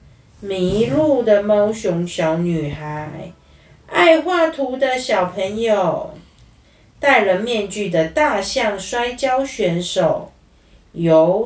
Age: 40-59